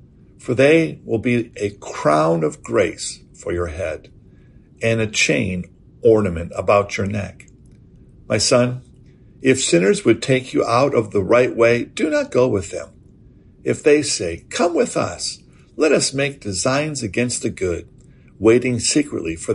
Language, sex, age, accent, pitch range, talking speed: English, male, 60-79, American, 100-135 Hz, 155 wpm